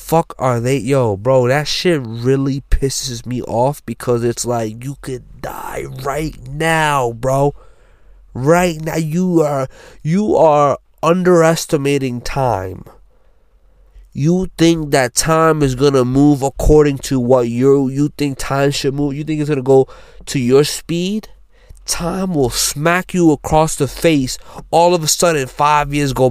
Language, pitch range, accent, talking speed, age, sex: English, 125-170 Hz, American, 150 wpm, 20-39, male